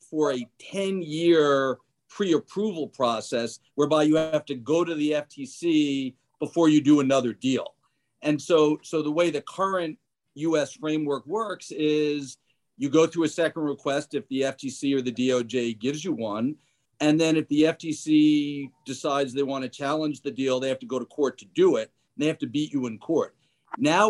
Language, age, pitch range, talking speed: English, 50-69, 135-160 Hz, 180 wpm